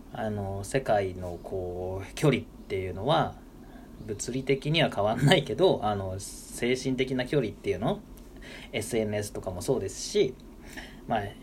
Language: Japanese